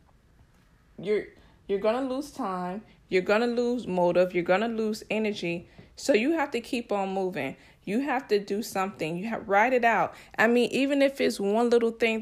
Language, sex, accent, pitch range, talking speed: English, female, American, 180-225 Hz, 200 wpm